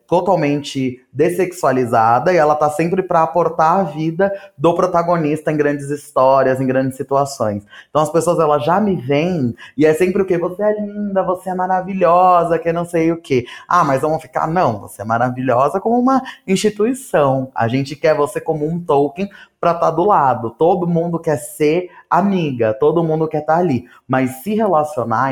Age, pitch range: 20-39, 130-170 Hz